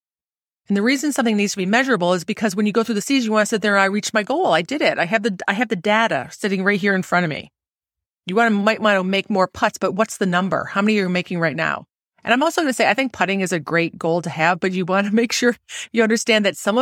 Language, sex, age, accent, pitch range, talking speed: English, female, 30-49, American, 185-230 Hz, 305 wpm